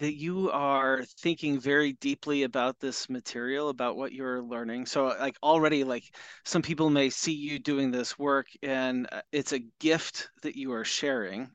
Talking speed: 170 wpm